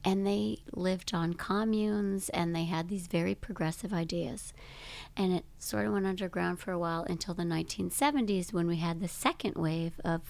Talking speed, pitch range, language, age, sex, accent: 180 wpm, 175-190 Hz, English, 40-59, female, American